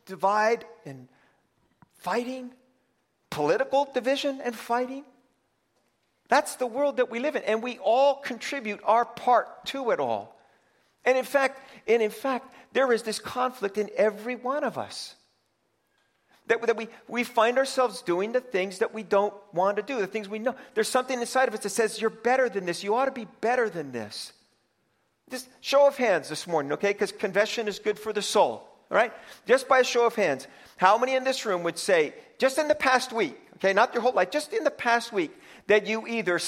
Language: English